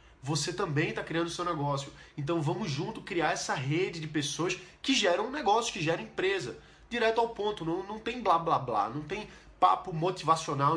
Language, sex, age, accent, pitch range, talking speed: Portuguese, male, 20-39, Brazilian, 150-200 Hz, 195 wpm